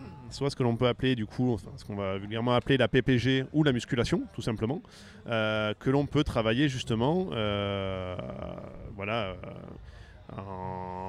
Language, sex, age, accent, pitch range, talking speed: French, male, 30-49, French, 110-140 Hz, 170 wpm